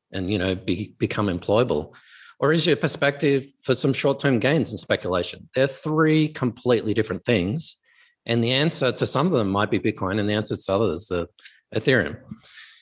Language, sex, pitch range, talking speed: English, male, 105-155 Hz, 180 wpm